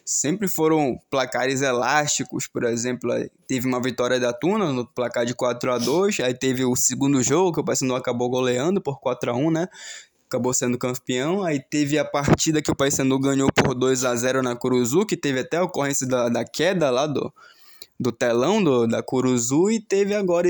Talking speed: 180 wpm